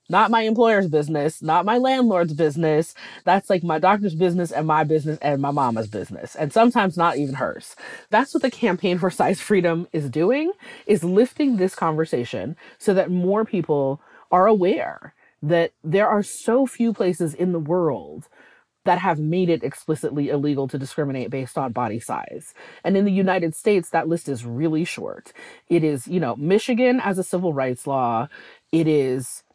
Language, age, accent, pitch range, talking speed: English, 30-49, American, 145-195 Hz, 175 wpm